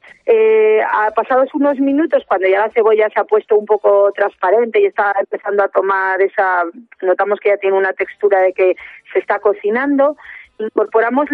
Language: Spanish